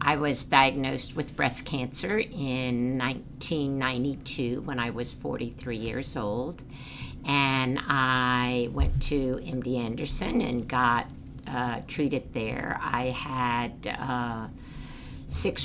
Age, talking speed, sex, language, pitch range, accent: 60-79, 110 wpm, female, English, 125-145 Hz, American